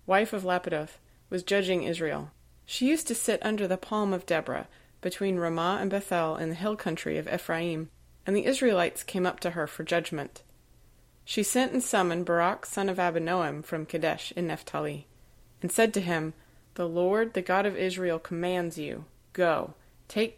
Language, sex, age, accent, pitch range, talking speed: English, female, 30-49, American, 165-195 Hz, 175 wpm